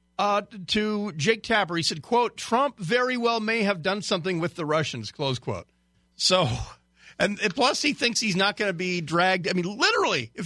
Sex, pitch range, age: male, 130-190 Hz, 50-69